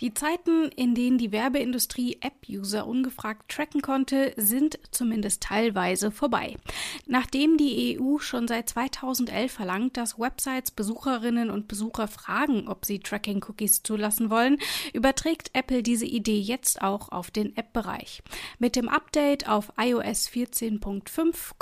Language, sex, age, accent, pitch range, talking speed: German, female, 30-49, German, 215-270 Hz, 130 wpm